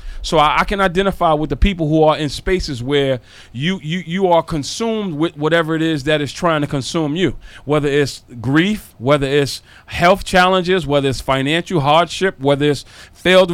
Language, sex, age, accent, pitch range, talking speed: English, male, 40-59, American, 145-200 Hz, 185 wpm